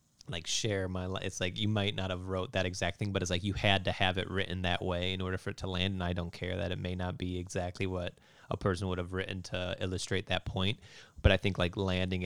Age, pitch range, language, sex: 30-49, 90-100 Hz, English, male